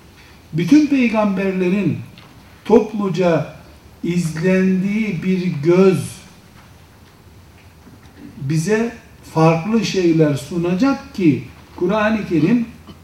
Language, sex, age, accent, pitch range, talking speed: Turkish, male, 60-79, native, 155-190 Hz, 60 wpm